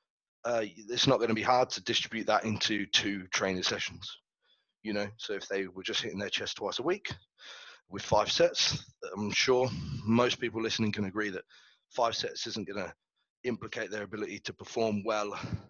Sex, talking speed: male, 185 wpm